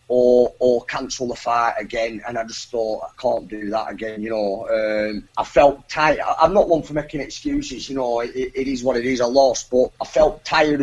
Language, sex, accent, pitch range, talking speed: English, male, British, 120-145 Hz, 225 wpm